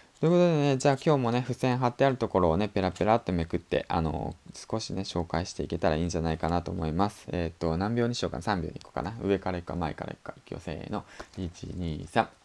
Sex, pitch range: male, 95-135 Hz